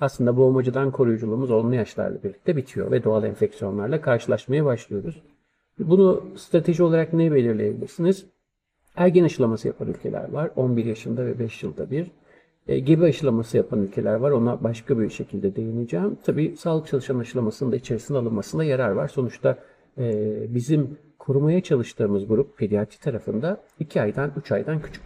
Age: 50-69